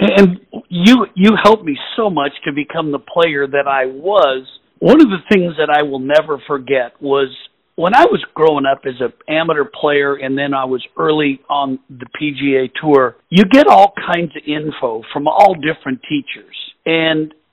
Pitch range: 140-180 Hz